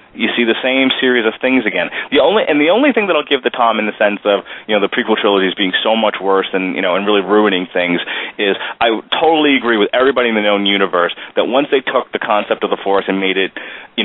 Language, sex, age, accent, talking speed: English, male, 30-49, American, 270 wpm